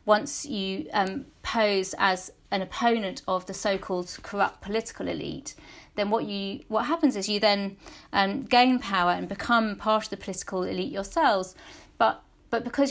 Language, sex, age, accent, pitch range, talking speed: English, female, 40-59, British, 185-220 Hz, 165 wpm